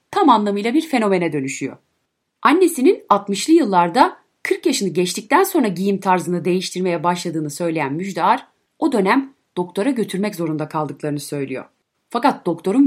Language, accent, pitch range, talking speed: Turkish, native, 170-230 Hz, 125 wpm